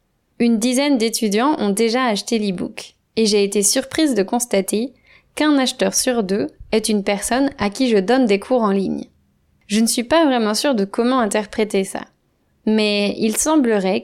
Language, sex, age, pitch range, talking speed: French, female, 20-39, 200-245 Hz, 175 wpm